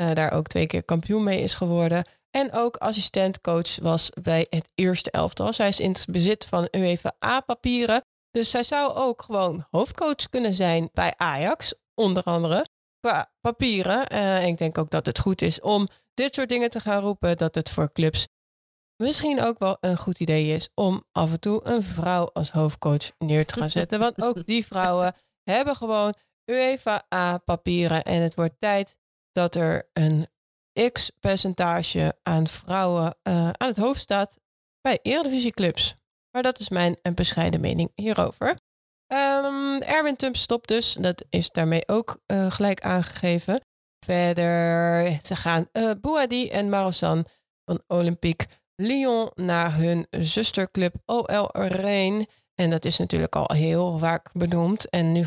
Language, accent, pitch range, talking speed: Dutch, Dutch, 170-225 Hz, 155 wpm